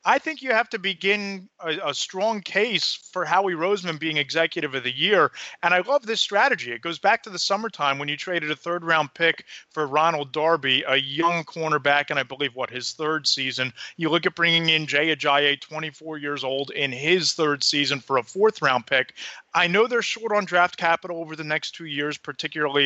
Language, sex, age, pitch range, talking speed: English, male, 30-49, 145-180 Hz, 205 wpm